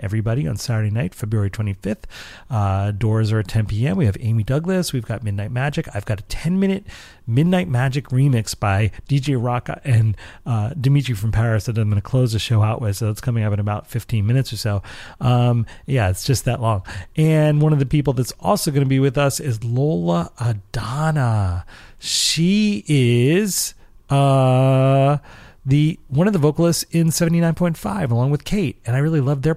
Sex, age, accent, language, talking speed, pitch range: male, 40-59, American, English, 190 wpm, 110-140 Hz